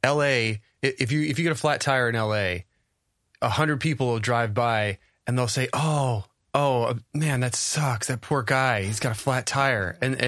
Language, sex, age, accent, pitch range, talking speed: English, male, 20-39, American, 110-140 Hz, 200 wpm